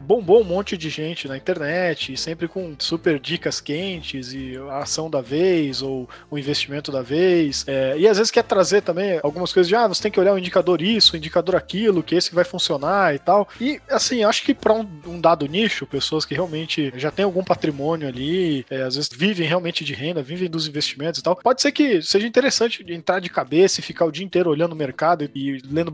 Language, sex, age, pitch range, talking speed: Portuguese, male, 20-39, 155-215 Hz, 235 wpm